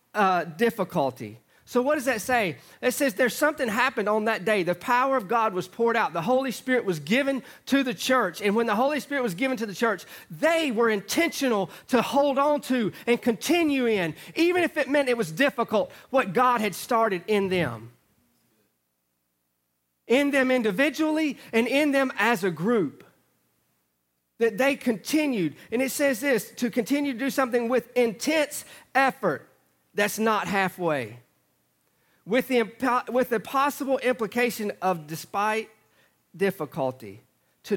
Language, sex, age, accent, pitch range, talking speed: English, male, 40-59, American, 160-255 Hz, 160 wpm